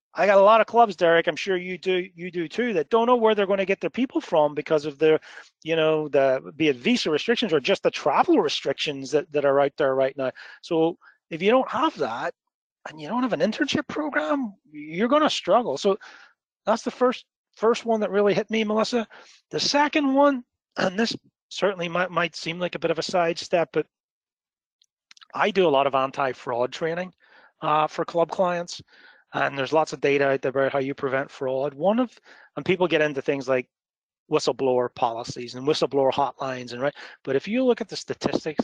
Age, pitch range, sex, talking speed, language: 30-49, 135-205 Hz, male, 210 wpm, English